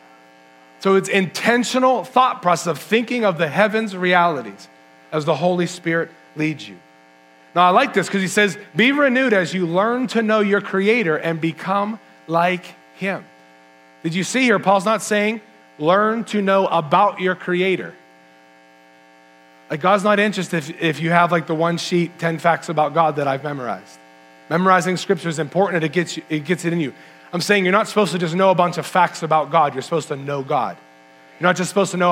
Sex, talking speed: male, 200 wpm